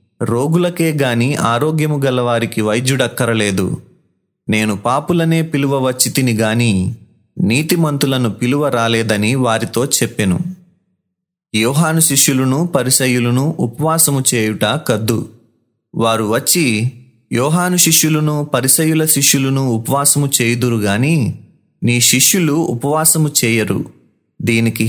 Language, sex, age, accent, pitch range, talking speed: Telugu, male, 30-49, native, 115-155 Hz, 75 wpm